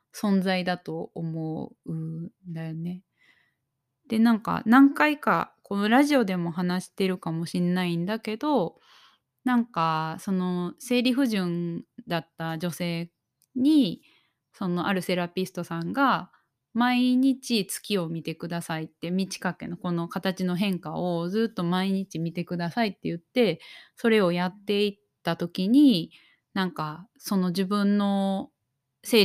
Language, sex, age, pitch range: Japanese, female, 20-39, 170-215 Hz